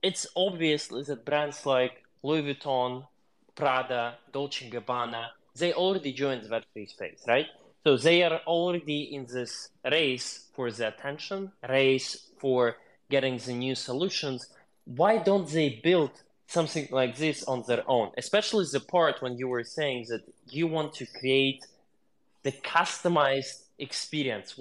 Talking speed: 140 wpm